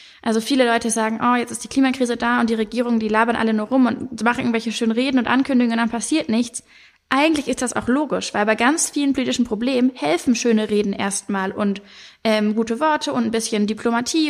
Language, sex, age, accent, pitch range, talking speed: German, female, 20-39, German, 230-265 Hz, 220 wpm